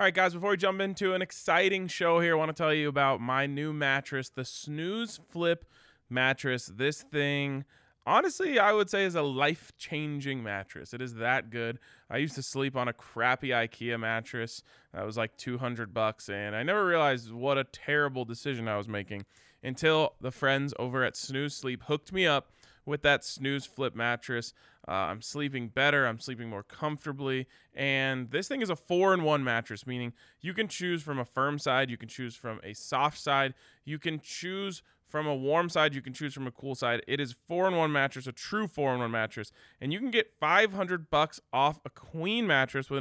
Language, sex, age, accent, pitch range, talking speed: English, male, 20-39, American, 120-155 Hz, 205 wpm